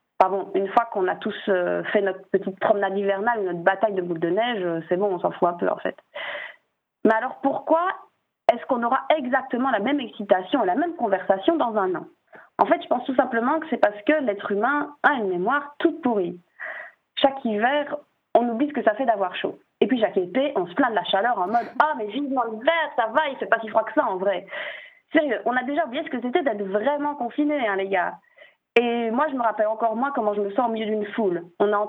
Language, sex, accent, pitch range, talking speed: French, female, French, 205-290 Hz, 260 wpm